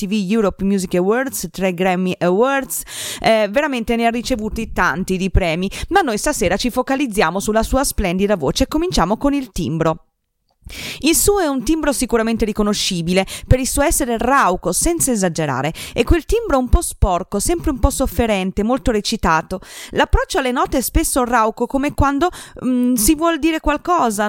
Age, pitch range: 30-49, 195-275 Hz